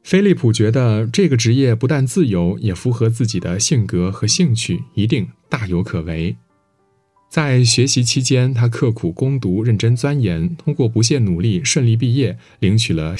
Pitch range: 100-135 Hz